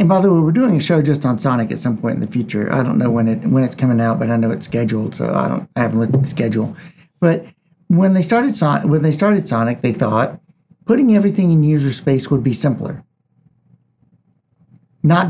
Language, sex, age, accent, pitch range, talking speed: English, male, 50-69, American, 130-170 Hz, 235 wpm